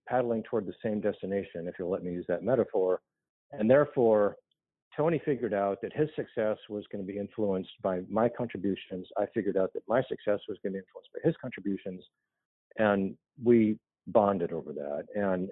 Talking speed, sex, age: 185 wpm, male, 50-69